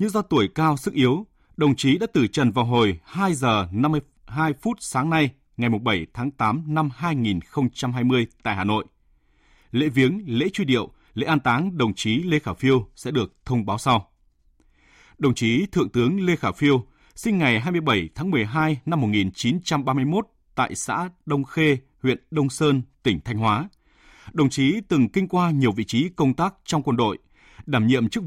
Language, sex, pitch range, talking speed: Vietnamese, male, 115-160 Hz, 185 wpm